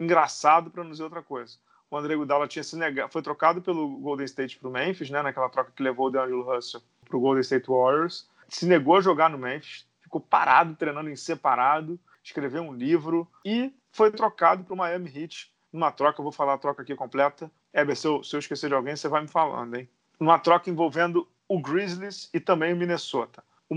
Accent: Brazilian